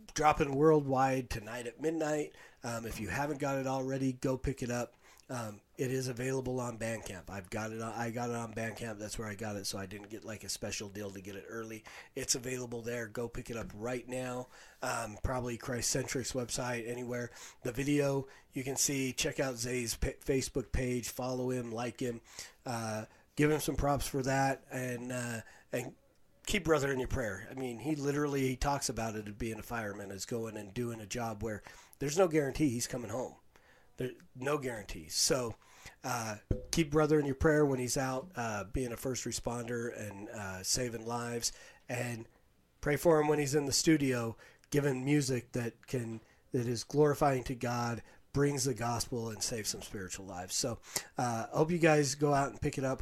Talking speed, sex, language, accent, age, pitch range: 200 wpm, male, English, American, 40-59, 115-135 Hz